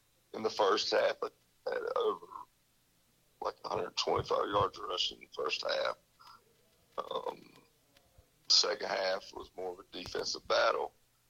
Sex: male